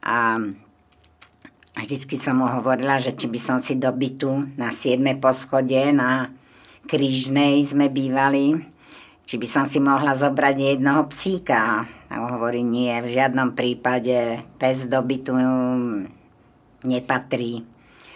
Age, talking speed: 50-69, 115 wpm